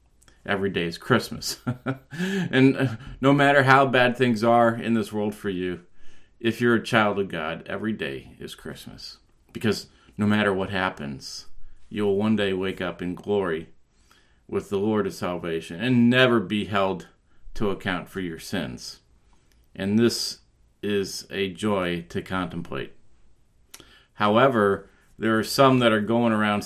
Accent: American